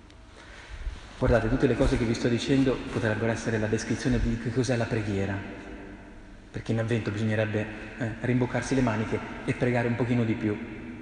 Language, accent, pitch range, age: Italian, native, 105-135 Hz, 30-49